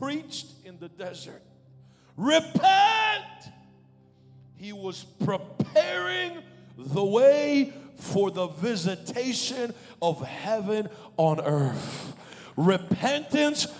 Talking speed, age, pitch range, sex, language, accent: 80 wpm, 50-69, 205-300 Hz, male, English, American